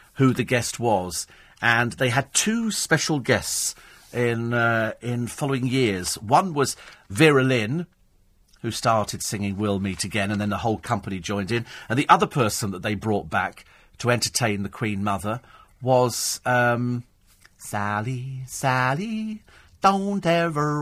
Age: 40-59